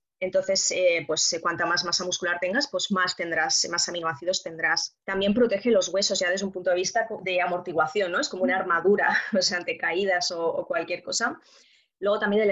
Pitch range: 175-220 Hz